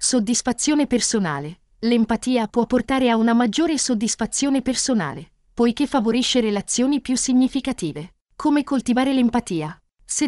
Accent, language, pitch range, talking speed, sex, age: native, Italian, 210-265 Hz, 110 wpm, female, 40-59